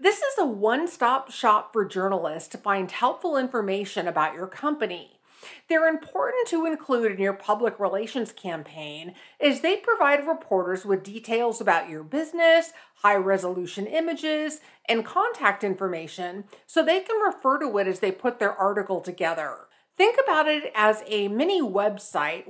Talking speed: 145 wpm